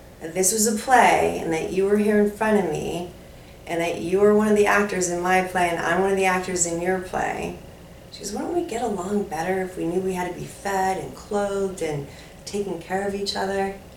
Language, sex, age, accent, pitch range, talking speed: English, female, 30-49, American, 165-200 Hz, 245 wpm